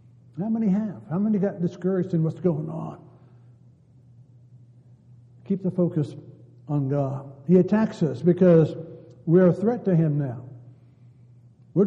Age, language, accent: 60-79, English, American